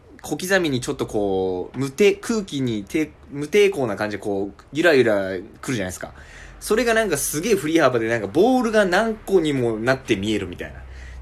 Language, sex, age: Japanese, male, 20-39